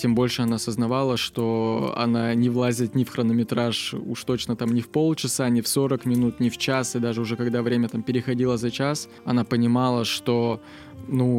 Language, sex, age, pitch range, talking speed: Russian, male, 20-39, 115-125 Hz, 195 wpm